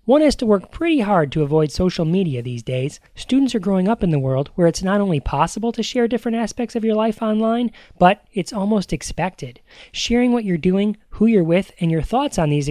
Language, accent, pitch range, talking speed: English, American, 160-230 Hz, 225 wpm